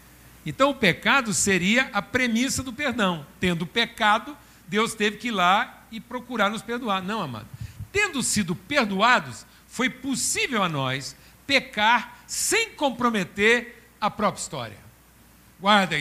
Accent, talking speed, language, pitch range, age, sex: Brazilian, 130 wpm, Portuguese, 145-230 Hz, 60-79, male